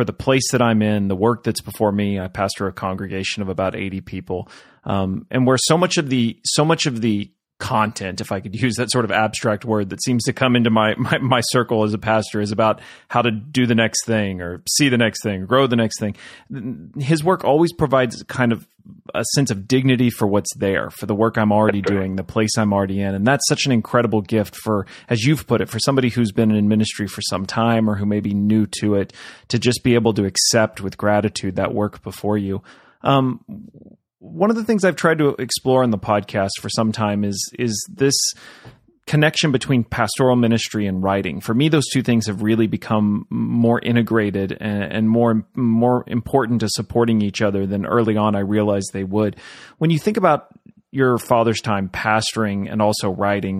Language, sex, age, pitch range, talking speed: English, male, 30-49, 105-130 Hz, 215 wpm